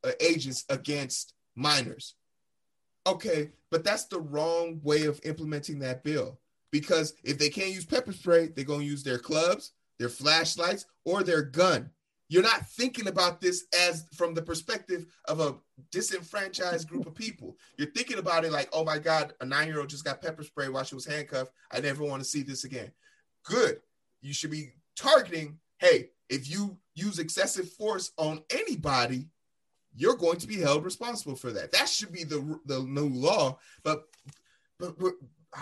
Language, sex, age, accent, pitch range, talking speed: English, male, 30-49, American, 145-185 Hz, 175 wpm